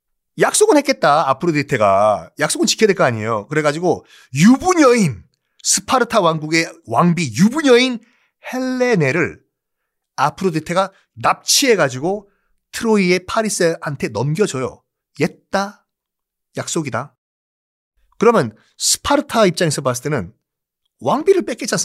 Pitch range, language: 140-215 Hz, Korean